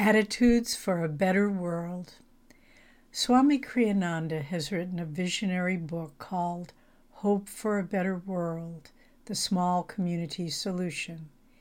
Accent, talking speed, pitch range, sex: American, 115 wpm, 175-230 Hz, female